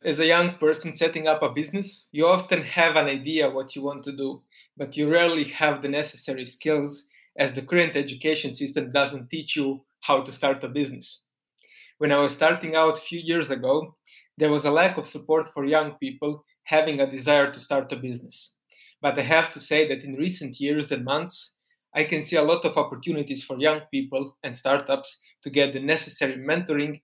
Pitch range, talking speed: 140-155 Hz, 200 wpm